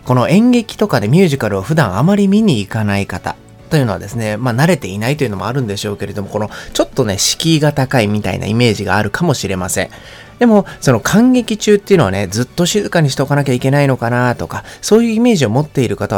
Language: Japanese